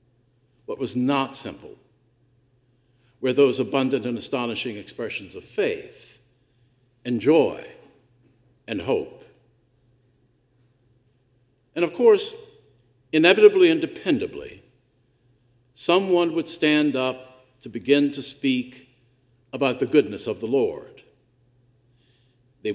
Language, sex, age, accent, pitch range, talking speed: English, male, 60-79, American, 120-135 Hz, 100 wpm